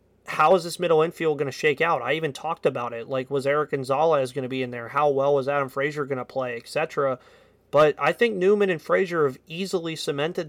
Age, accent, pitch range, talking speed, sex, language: 30-49, American, 130-155 Hz, 235 wpm, male, English